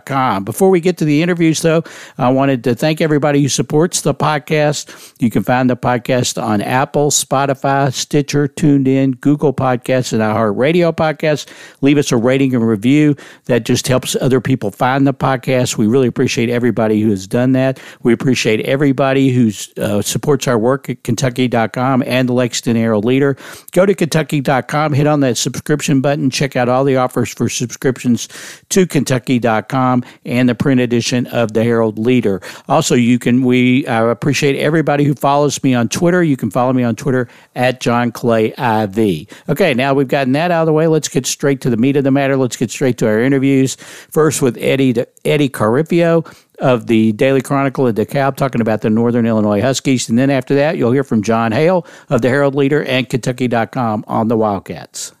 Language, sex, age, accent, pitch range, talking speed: English, male, 60-79, American, 120-145 Hz, 190 wpm